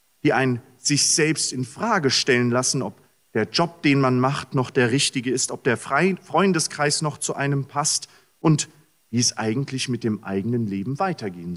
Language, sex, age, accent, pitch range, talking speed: German, male, 40-59, German, 115-150 Hz, 180 wpm